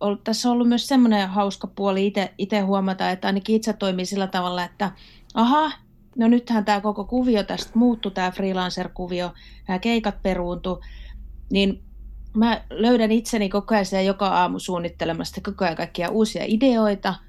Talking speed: 155 wpm